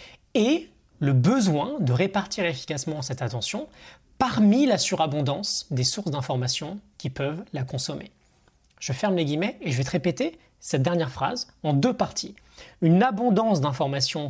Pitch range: 135-210 Hz